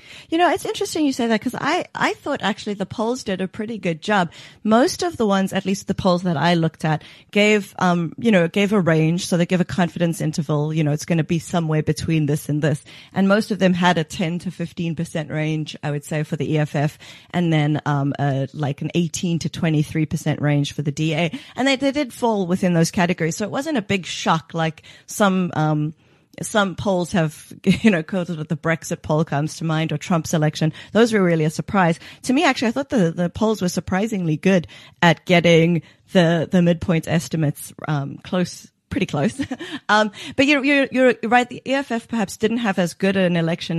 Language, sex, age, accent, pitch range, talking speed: English, female, 30-49, American, 155-200 Hz, 215 wpm